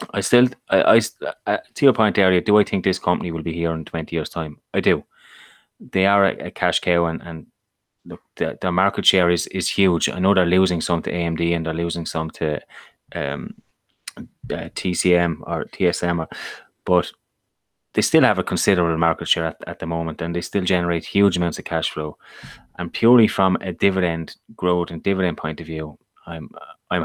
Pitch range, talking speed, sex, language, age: 85-95 Hz, 195 wpm, male, English, 20-39